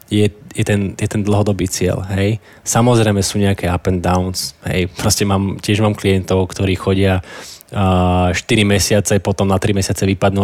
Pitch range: 95-110 Hz